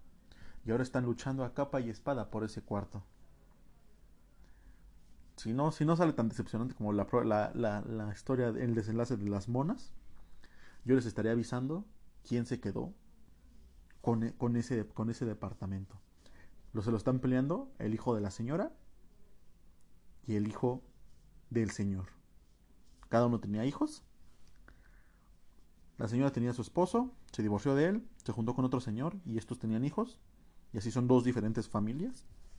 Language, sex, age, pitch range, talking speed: Spanish, male, 30-49, 95-120 Hz, 160 wpm